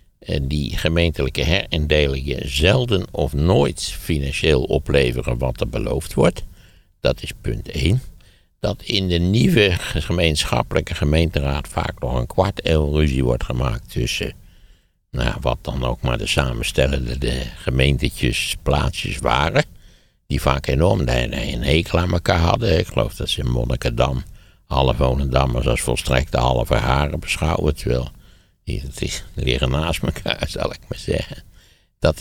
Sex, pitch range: male, 65-80 Hz